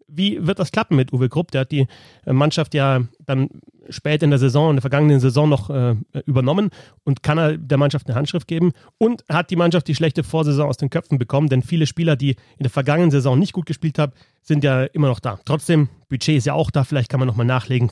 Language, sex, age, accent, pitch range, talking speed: German, male, 30-49, German, 130-160 Hz, 240 wpm